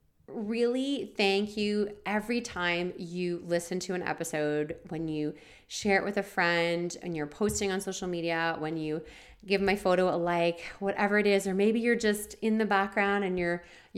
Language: English